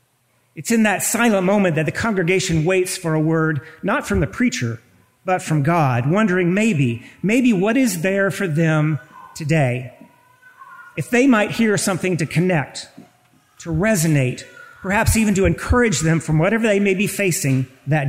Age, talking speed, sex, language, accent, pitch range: 40-59, 165 wpm, male, English, American, 155-225 Hz